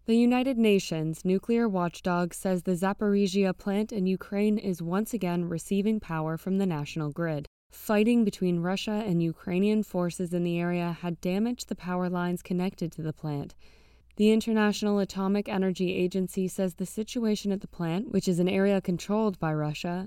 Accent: American